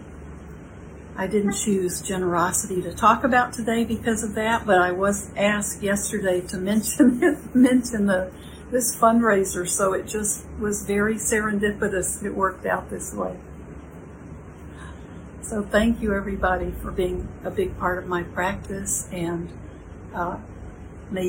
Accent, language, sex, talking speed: American, English, female, 130 wpm